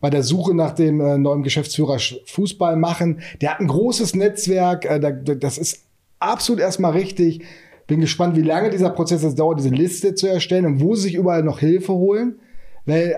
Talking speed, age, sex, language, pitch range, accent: 180 wpm, 30-49, male, German, 150-185 Hz, German